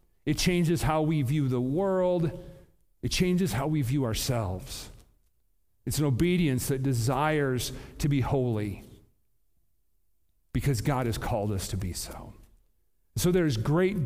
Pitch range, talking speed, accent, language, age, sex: 130-210 Hz, 135 wpm, American, English, 40-59, male